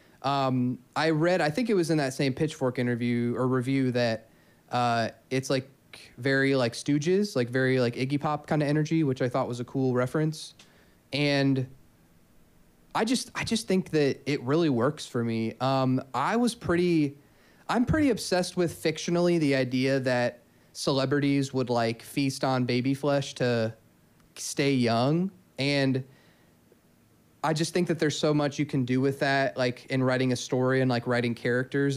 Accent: American